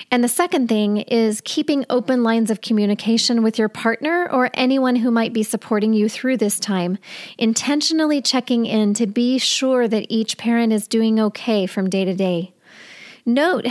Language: English